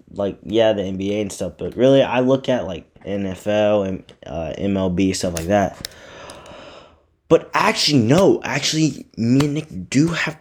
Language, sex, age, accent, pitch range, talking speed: English, male, 20-39, American, 95-130 Hz, 160 wpm